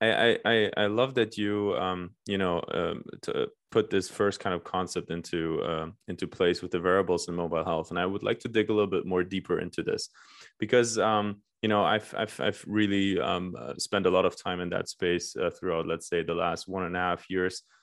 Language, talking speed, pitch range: English, 230 wpm, 90-110 Hz